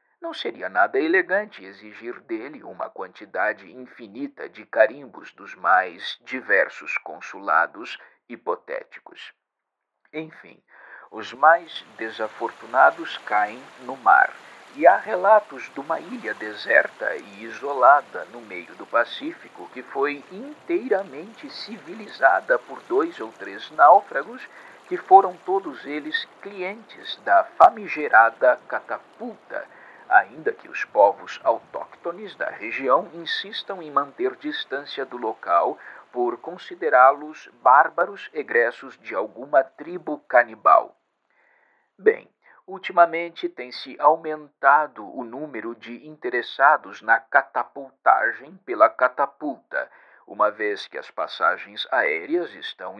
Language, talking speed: Portuguese, 105 wpm